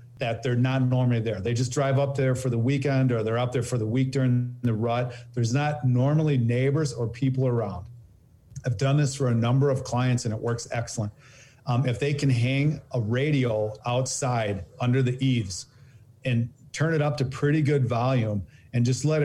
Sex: male